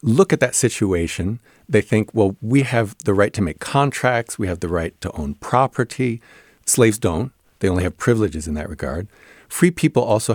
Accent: American